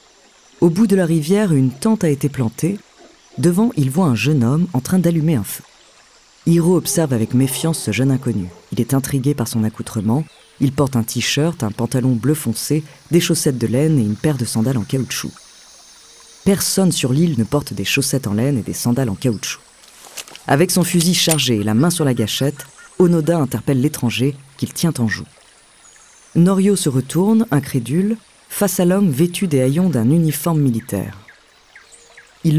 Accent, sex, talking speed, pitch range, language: French, female, 180 wpm, 125-170 Hz, French